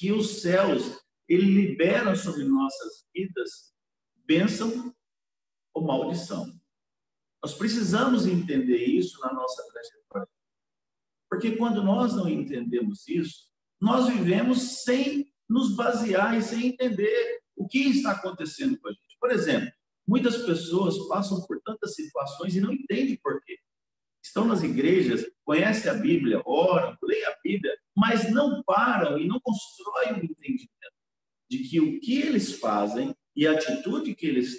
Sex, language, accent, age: male, Portuguese, Brazilian, 50-69